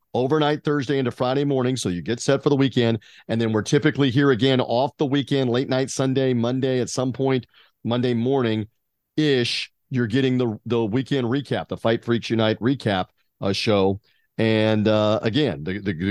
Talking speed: 180 wpm